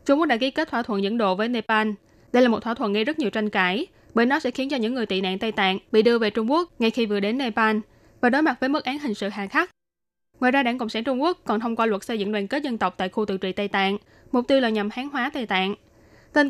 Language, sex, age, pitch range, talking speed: Vietnamese, female, 10-29, 205-250 Hz, 305 wpm